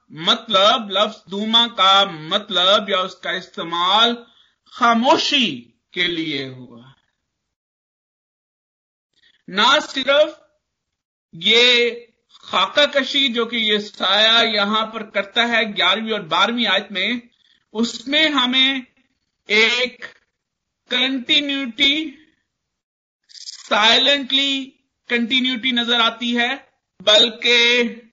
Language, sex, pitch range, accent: Hindi, male, 190-245 Hz, native